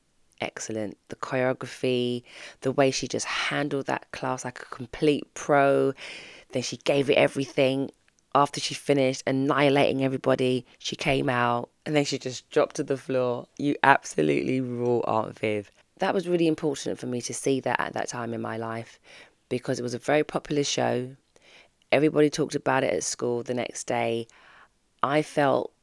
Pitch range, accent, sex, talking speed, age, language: 115-140 Hz, British, female, 170 wpm, 20-39, English